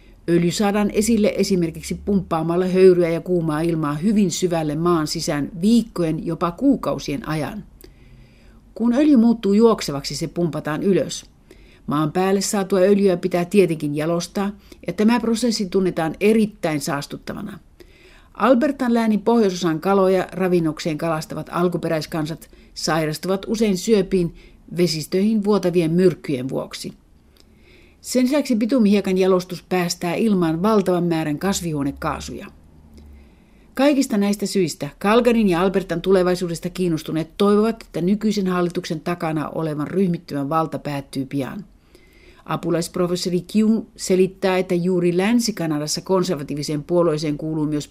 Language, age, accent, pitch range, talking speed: Finnish, 60-79, native, 160-200 Hz, 110 wpm